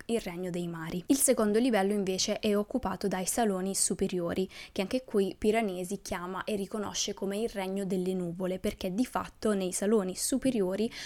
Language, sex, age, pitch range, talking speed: Italian, female, 20-39, 190-230 Hz, 170 wpm